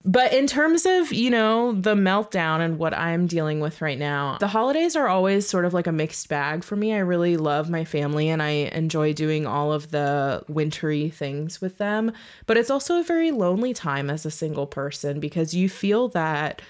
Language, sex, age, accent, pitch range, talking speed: English, female, 20-39, American, 150-180 Hz, 210 wpm